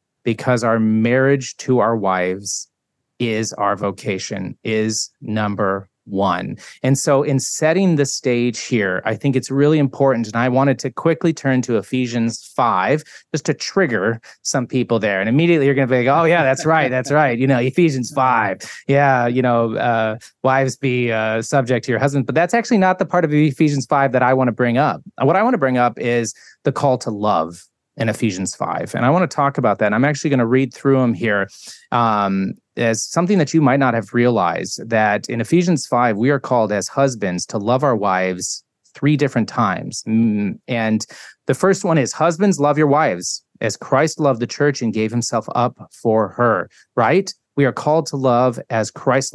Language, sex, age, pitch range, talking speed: English, male, 30-49, 110-140 Hz, 200 wpm